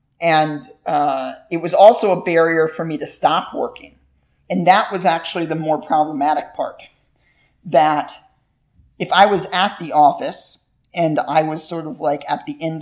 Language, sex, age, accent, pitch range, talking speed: English, male, 40-59, American, 150-195 Hz, 170 wpm